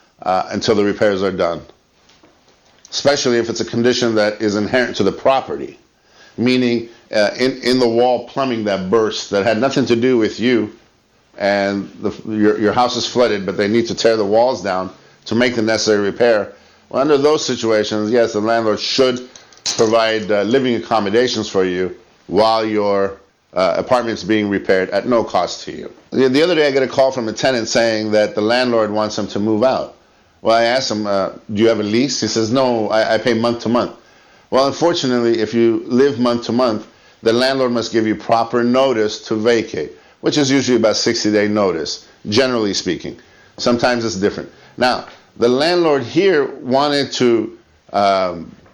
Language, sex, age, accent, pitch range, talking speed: English, male, 50-69, American, 105-130 Hz, 185 wpm